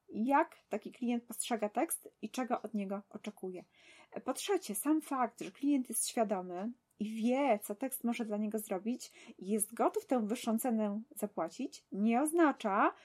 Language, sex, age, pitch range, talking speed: Polish, female, 20-39, 210-270 Hz, 155 wpm